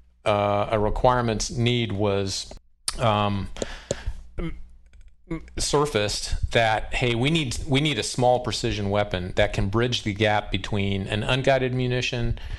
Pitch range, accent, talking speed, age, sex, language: 95-115 Hz, American, 125 wpm, 40-59, male, English